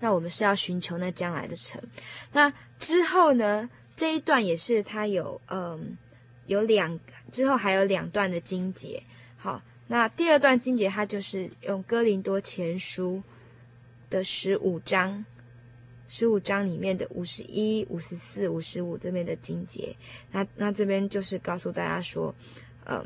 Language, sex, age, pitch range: Chinese, female, 20-39, 170-215 Hz